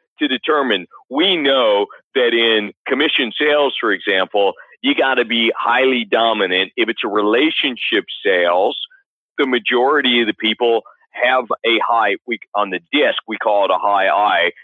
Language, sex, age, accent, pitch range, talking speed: English, male, 40-59, American, 110-175 Hz, 155 wpm